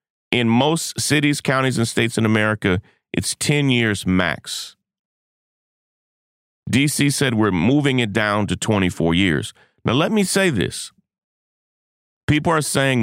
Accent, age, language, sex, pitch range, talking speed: American, 40-59, English, male, 95-135 Hz, 135 wpm